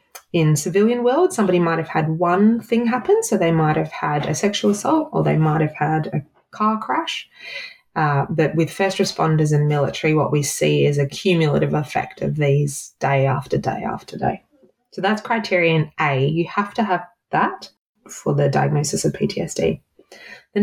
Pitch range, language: 150-200 Hz, English